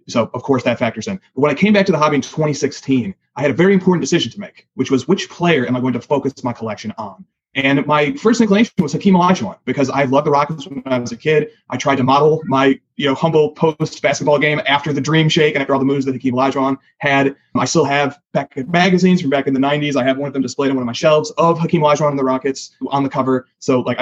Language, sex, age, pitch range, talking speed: English, male, 30-49, 135-160 Hz, 270 wpm